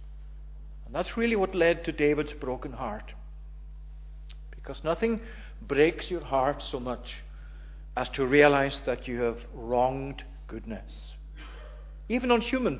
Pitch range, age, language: 125-165 Hz, 50-69, English